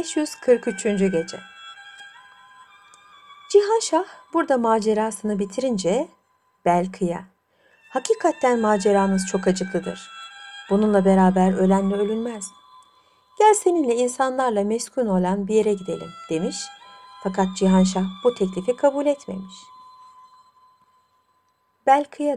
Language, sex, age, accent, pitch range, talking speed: Turkish, female, 60-79, native, 195-295 Hz, 85 wpm